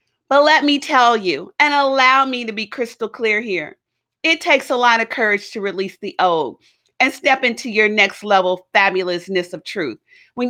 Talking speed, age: 190 wpm, 40-59